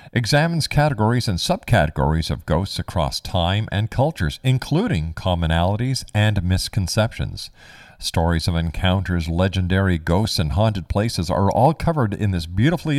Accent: American